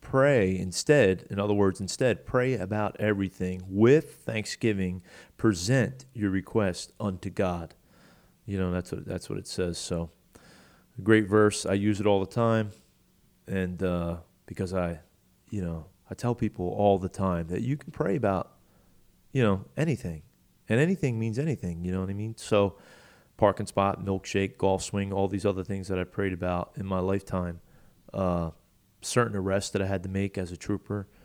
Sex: male